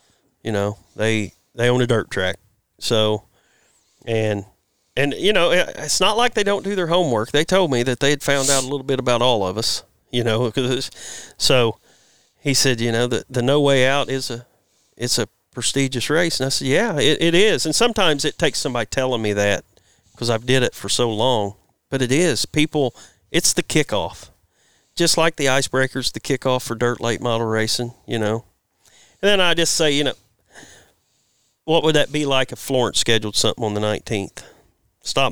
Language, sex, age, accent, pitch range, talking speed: English, male, 40-59, American, 105-135 Hz, 200 wpm